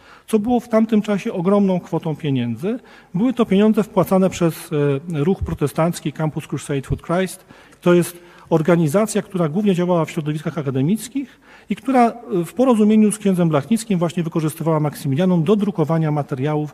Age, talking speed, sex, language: 40-59, 145 wpm, male, Polish